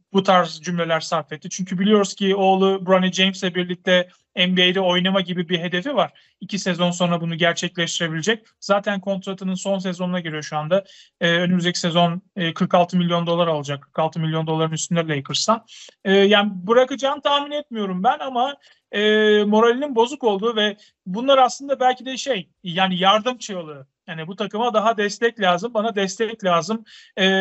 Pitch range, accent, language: 175-210 Hz, native, Turkish